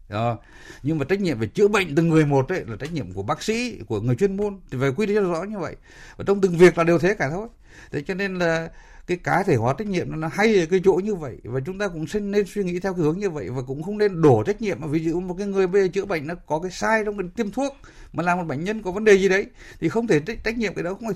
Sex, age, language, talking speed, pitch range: male, 60-79, Vietnamese, 320 wpm, 120-200 Hz